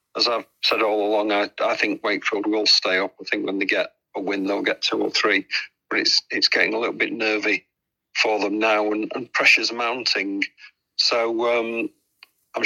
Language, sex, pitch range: English, male, 105-125 Hz